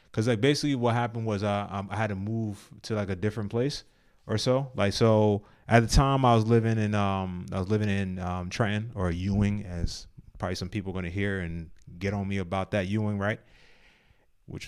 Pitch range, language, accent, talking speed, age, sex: 95-115 Hz, English, American, 215 wpm, 30-49, male